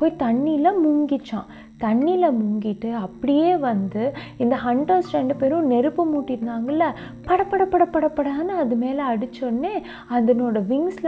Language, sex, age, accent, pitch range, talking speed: Tamil, female, 20-39, native, 225-315 Hz, 120 wpm